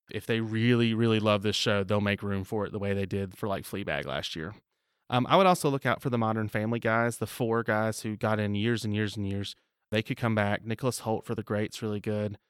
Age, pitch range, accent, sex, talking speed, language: 30-49, 110-130 Hz, American, male, 260 wpm, English